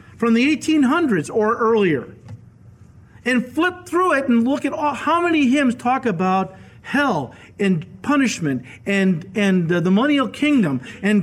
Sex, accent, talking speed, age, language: male, American, 145 wpm, 40-59, English